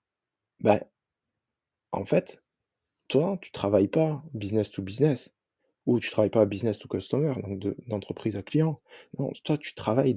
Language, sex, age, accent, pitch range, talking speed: French, male, 20-39, French, 105-155 Hz, 155 wpm